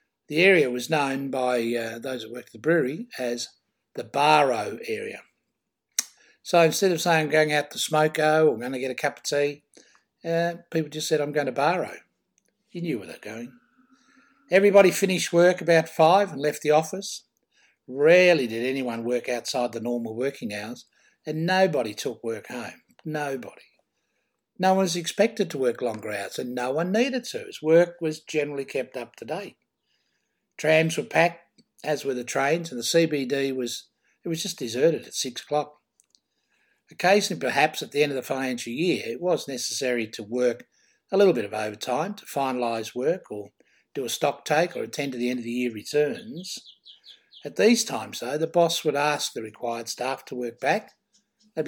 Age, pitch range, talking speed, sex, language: 60-79, 125-185 Hz, 185 wpm, male, English